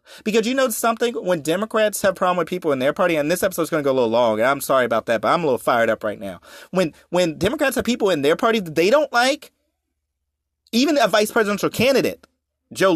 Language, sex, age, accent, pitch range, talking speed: English, male, 30-49, American, 145-225 Hz, 240 wpm